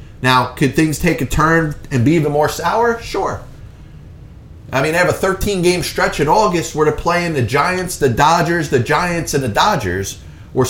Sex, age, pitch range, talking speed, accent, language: male, 30-49, 130-175 Hz, 190 wpm, American, English